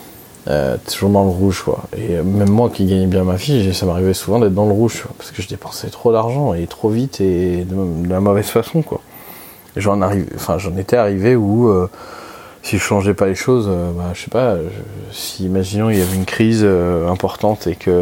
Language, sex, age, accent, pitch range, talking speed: French, male, 20-39, French, 95-115 Hz, 230 wpm